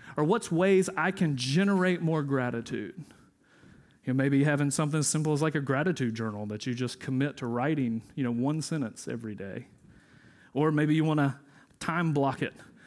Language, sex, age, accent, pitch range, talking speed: English, male, 40-59, American, 135-165 Hz, 185 wpm